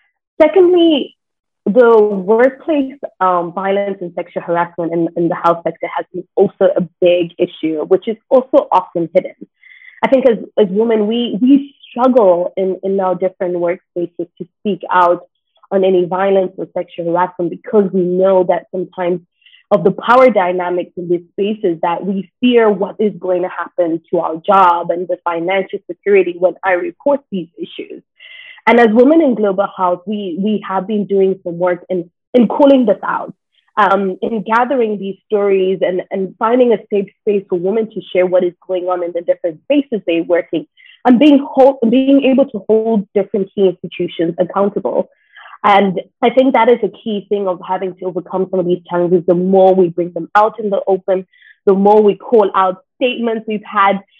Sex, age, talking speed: female, 20-39, 185 wpm